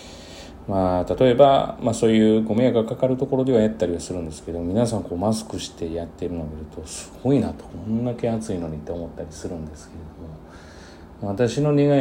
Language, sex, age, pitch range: Japanese, male, 40-59, 85-115 Hz